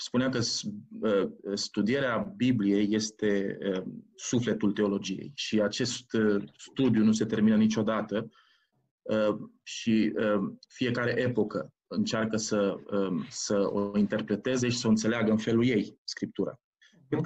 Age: 30-49